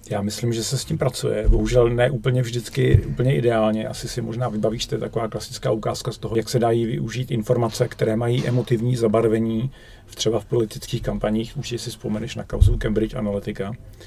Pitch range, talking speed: 105-125 Hz, 190 wpm